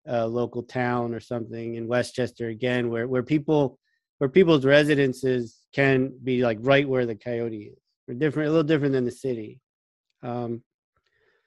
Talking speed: 160 wpm